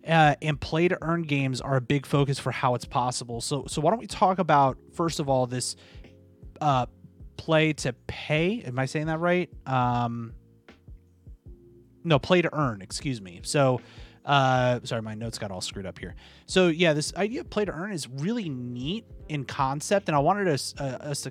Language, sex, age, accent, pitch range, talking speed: English, male, 30-49, American, 120-155 Hz, 175 wpm